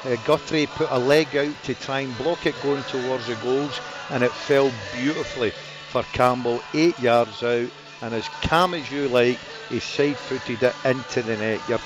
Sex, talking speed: male, 190 wpm